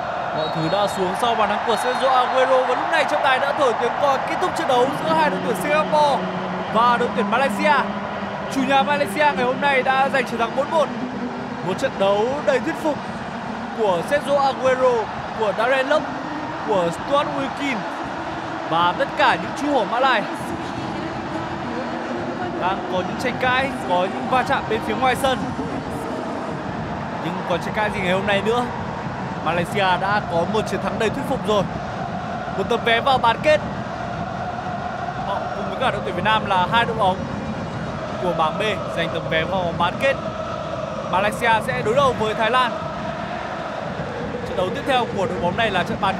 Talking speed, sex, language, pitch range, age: 185 wpm, male, Vietnamese, 200-270 Hz, 20-39